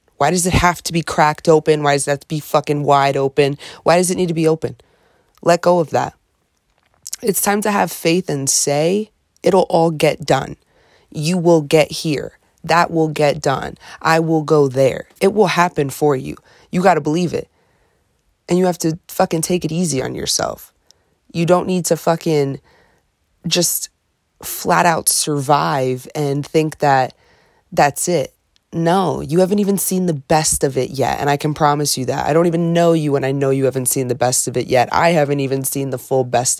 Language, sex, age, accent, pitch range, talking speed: English, female, 20-39, American, 135-170 Hz, 200 wpm